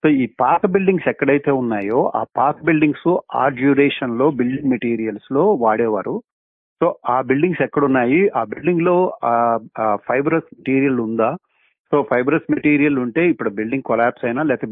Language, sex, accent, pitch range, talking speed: Telugu, male, native, 115-155 Hz, 150 wpm